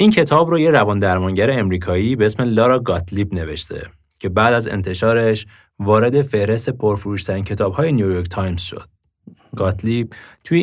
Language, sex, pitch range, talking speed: English, male, 95-125 Hz, 140 wpm